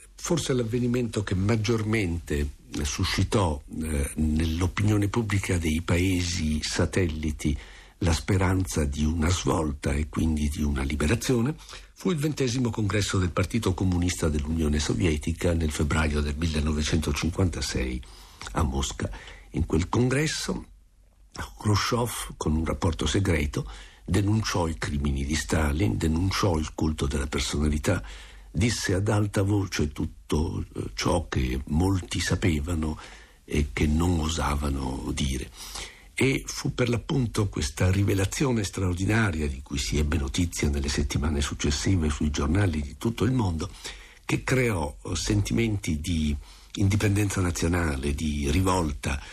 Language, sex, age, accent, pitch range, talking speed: Italian, male, 60-79, native, 75-100 Hz, 120 wpm